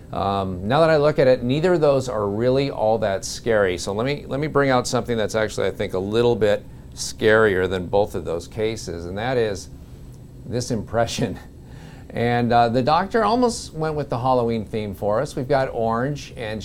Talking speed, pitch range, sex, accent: 205 wpm, 100-125 Hz, male, American